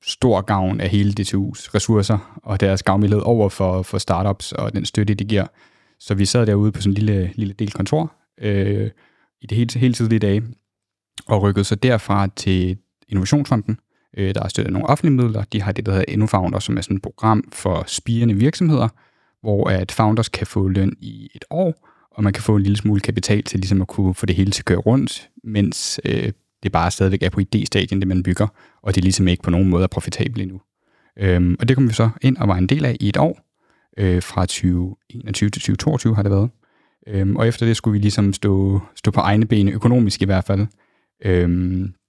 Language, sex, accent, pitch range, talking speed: Danish, male, native, 95-115 Hz, 220 wpm